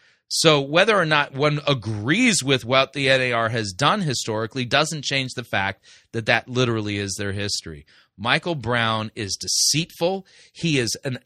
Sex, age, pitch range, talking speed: male, 30-49, 105-130 Hz, 160 wpm